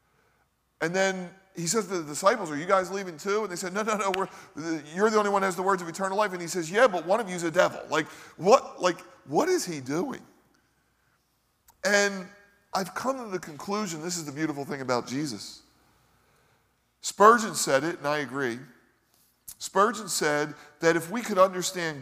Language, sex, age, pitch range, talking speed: English, male, 40-59, 135-190 Hz, 200 wpm